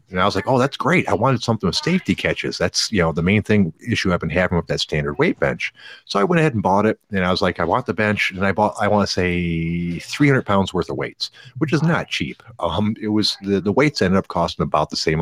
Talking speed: 280 wpm